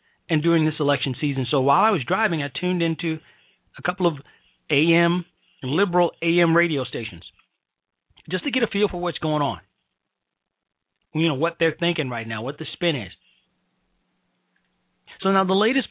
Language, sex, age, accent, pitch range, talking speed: English, male, 40-59, American, 135-170 Hz, 170 wpm